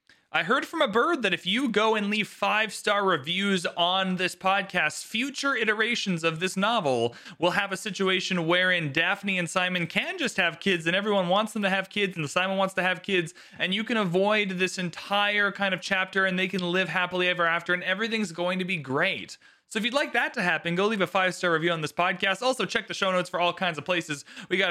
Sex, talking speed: male, 235 wpm